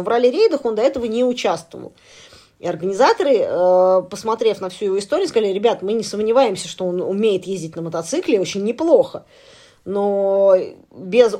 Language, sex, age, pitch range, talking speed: Russian, female, 20-39, 180-235 Hz, 155 wpm